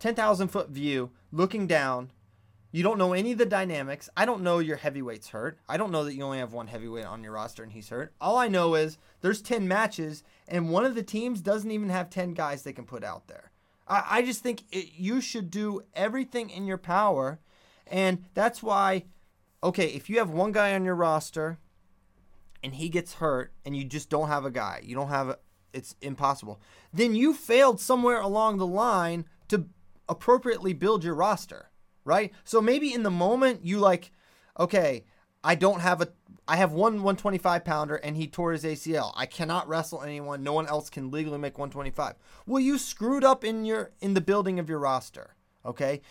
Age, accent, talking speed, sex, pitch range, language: 30-49, American, 200 wpm, male, 145-215 Hz, English